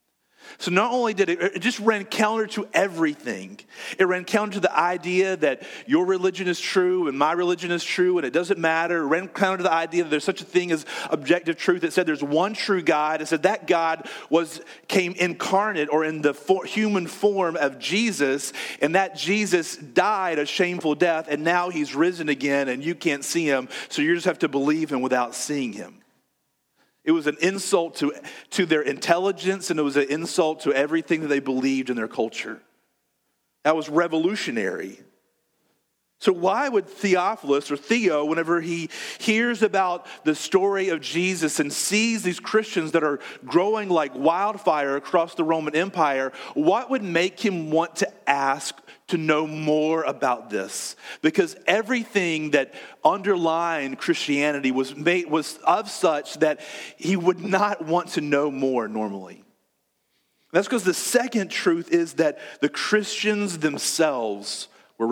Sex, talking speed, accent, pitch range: male, 170 wpm, American, 150-195 Hz